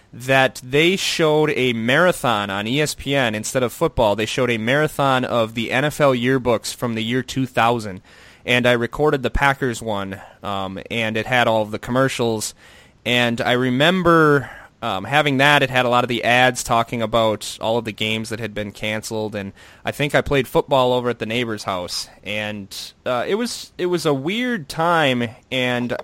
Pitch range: 110-145 Hz